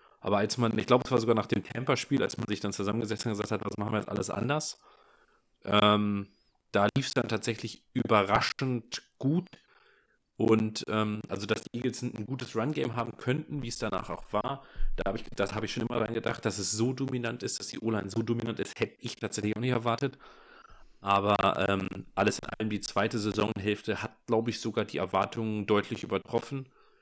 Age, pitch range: 30-49, 105-120 Hz